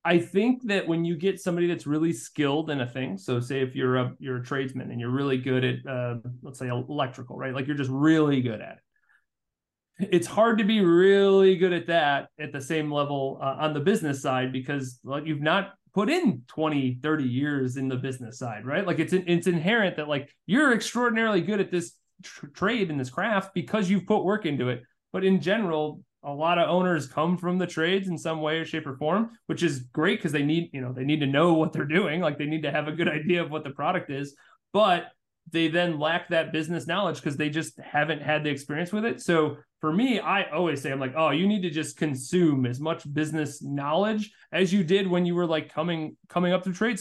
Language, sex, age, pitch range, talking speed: English, male, 30-49, 140-185 Hz, 235 wpm